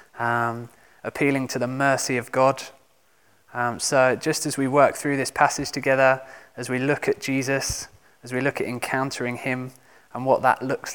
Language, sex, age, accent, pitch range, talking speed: English, male, 20-39, British, 125-145 Hz, 175 wpm